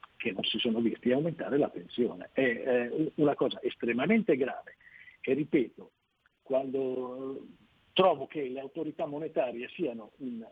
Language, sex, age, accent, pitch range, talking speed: Italian, male, 50-69, native, 130-180 Hz, 130 wpm